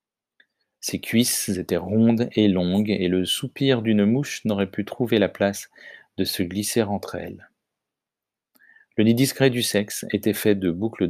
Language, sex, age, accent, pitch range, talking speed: French, male, 40-59, French, 95-115 Hz, 160 wpm